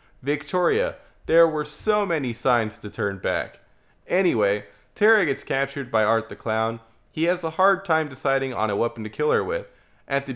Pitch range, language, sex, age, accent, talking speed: 110-140 Hz, English, male, 20-39, American, 185 wpm